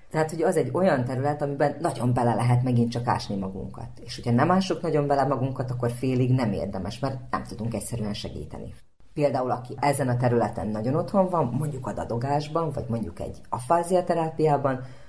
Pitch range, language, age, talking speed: 115-140 Hz, Hungarian, 30-49, 180 wpm